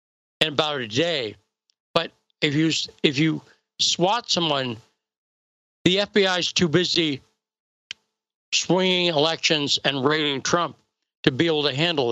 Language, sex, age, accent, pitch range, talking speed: English, male, 60-79, American, 140-170 Hz, 130 wpm